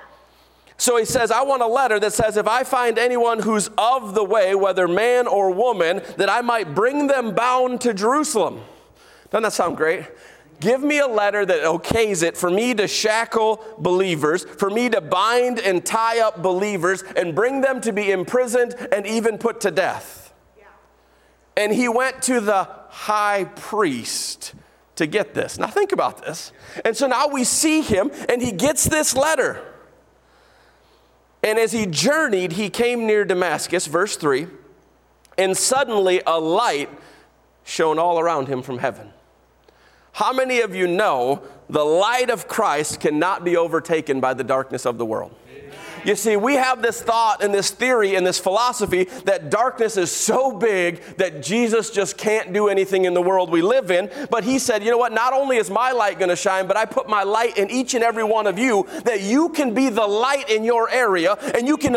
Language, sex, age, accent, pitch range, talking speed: English, male, 40-59, American, 190-250 Hz, 190 wpm